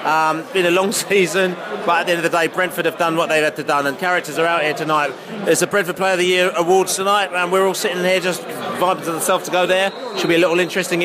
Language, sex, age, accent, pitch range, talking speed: English, male, 30-49, British, 165-195 Hz, 280 wpm